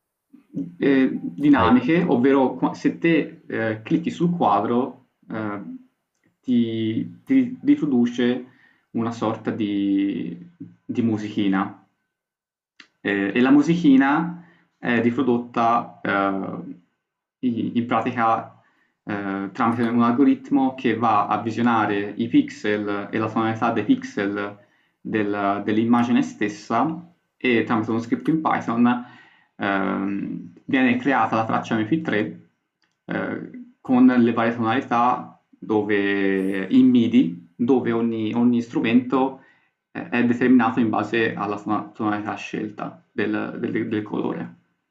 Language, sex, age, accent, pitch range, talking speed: Italian, male, 20-39, native, 105-130 Hz, 105 wpm